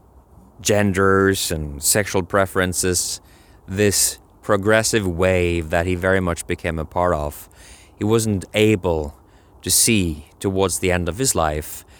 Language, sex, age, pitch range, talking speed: English, male, 20-39, 85-105 Hz, 130 wpm